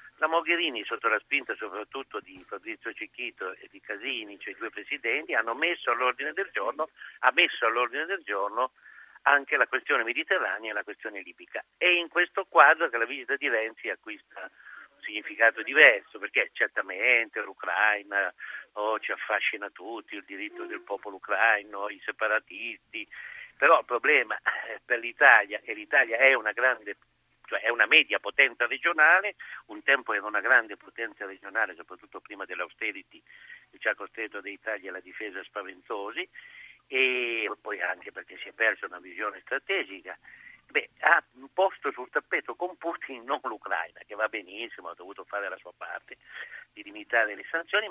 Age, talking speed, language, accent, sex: 50-69, 160 wpm, Italian, native, male